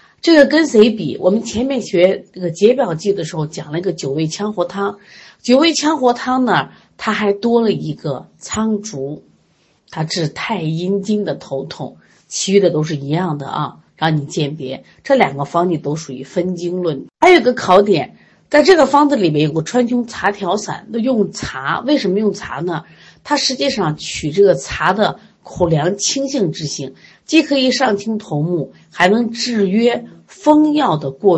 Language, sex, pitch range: Chinese, female, 160-245 Hz